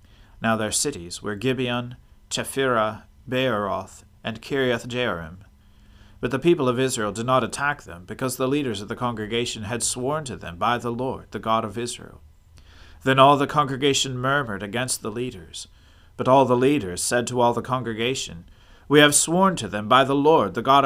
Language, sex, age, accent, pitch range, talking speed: English, male, 40-59, American, 100-130 Hz, 180 wpm